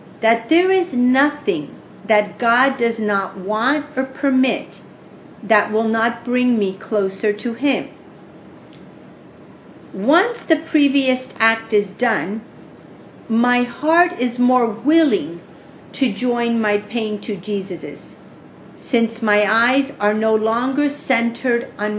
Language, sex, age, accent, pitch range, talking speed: English, female, 50-69, American, 215-270 Hz, 120 wpm